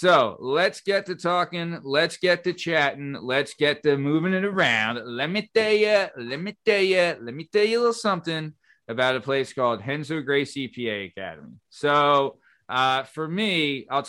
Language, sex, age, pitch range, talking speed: English, male, 30-49, 130-155 Hz, 185 wpm